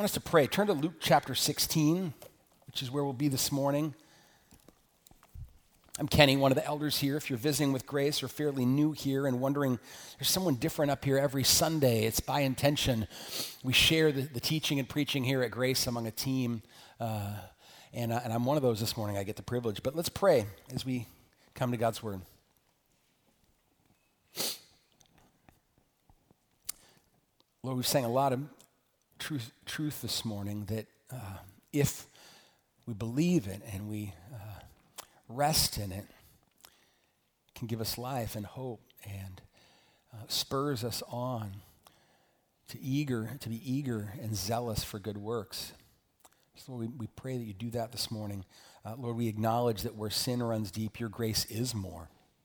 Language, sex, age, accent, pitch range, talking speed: English, male, 40-59, American, 110-140 Hz, 170 wpm